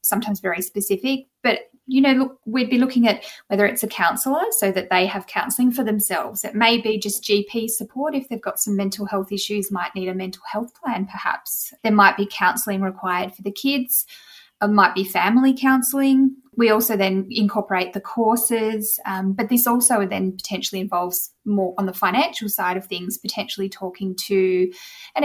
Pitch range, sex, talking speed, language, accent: 190-235 Hz, female, 190 wpm, English, Australian